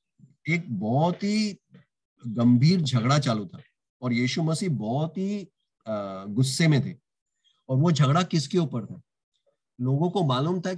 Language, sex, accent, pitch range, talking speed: English, male, Indian, 130-175 Hz, 140 wpm